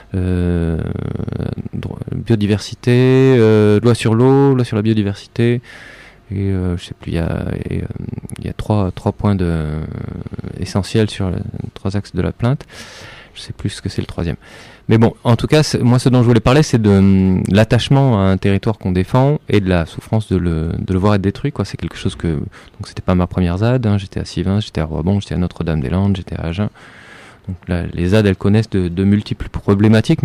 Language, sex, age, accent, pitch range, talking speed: French, male, 20-39, French, 90-115 Hz, 210 wpm